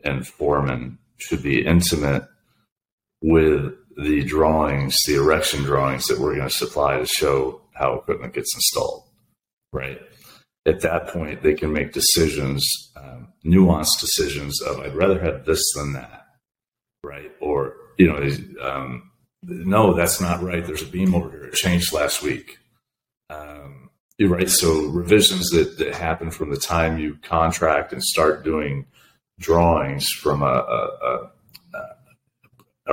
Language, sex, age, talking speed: English, male, 40-59, 140 wpm